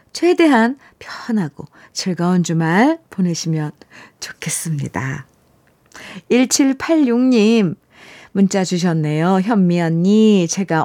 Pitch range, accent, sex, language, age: 180-245 Hz, native, female, Korean, 50-69